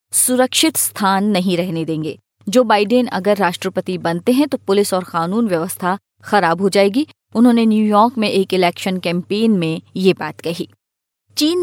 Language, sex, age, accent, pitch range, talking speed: Hindi, female, 20-39, native, 185-235 Hz, 155 wpm